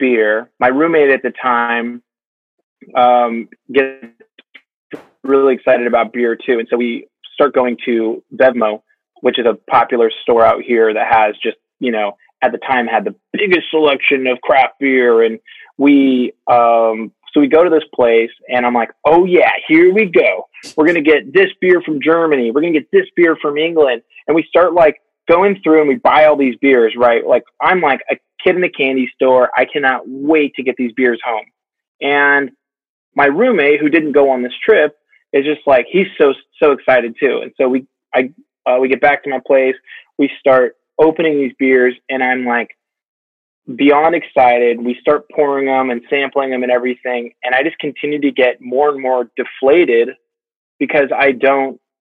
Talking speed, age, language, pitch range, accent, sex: 190 wpm, 20-39, English, 125-150 Hz, American, male